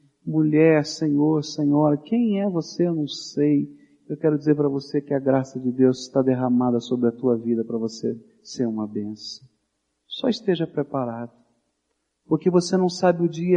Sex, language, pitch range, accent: male, Portuguese, 125-190 Hz, Brazilian